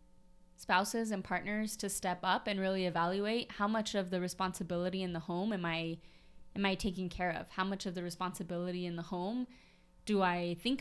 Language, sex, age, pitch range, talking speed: English, female, 20-39, 175-200 Hz, 195 wpm